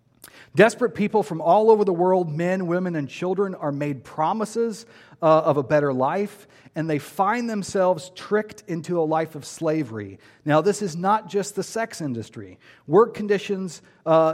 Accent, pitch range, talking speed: American, 150-195 Hz, 165 wpm